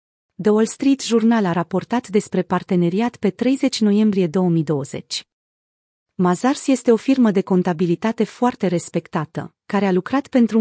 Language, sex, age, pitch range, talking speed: Romanian, female, 30-49, 175-220 Hz, 135 wpm